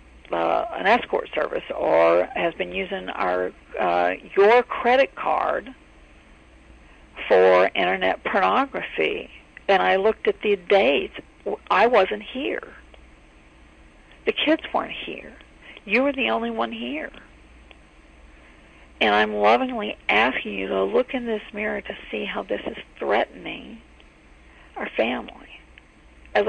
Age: 50-69